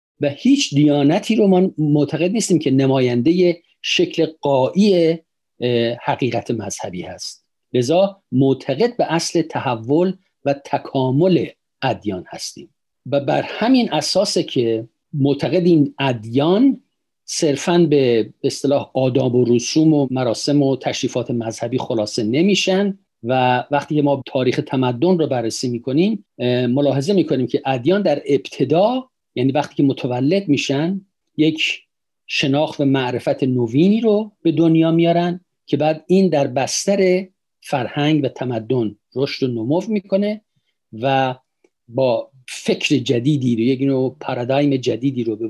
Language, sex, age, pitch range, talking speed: Persian, male, 50-69, 130-170 Hz, 125 wpm